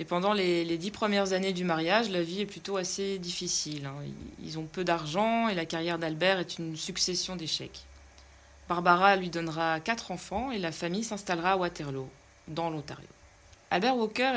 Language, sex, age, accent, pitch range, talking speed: French, female, 20-39, French, 160-195 Hz, 175 wpm